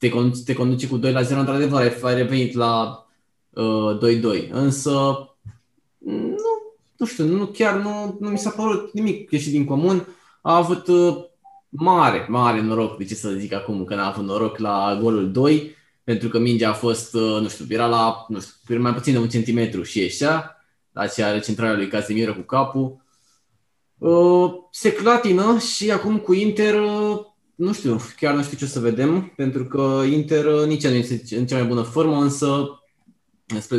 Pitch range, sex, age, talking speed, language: 110-150 Hz, male, 20-39, 185 wpm, Romanian